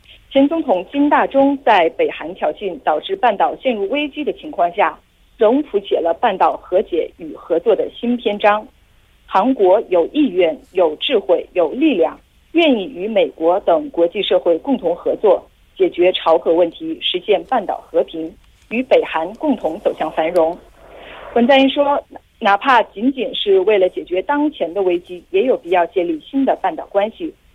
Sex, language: female, Korean